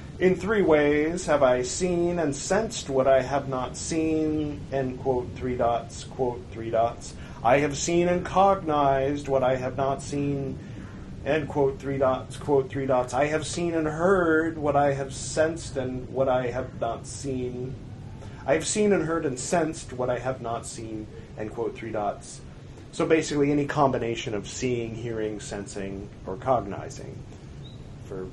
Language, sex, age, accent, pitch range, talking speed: English, male, 30-49, American, 125-155 Hz, 165 wpm